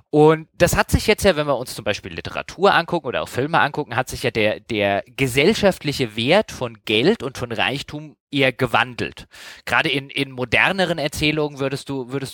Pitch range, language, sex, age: 120-155 Hz, German, male, 20-39